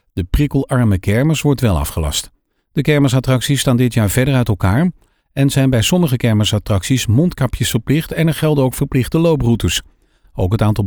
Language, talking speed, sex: Dutch, 165 wpm, male